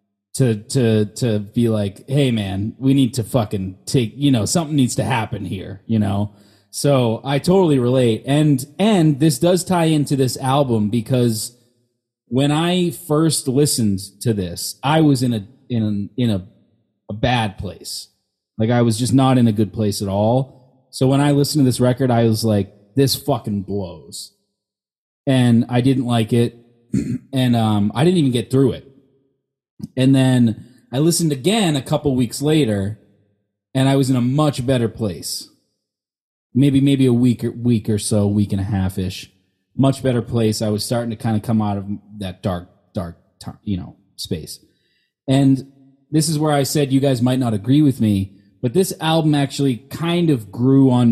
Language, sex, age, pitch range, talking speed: English, male, 30-49, 105-135 Hz, 180 wpm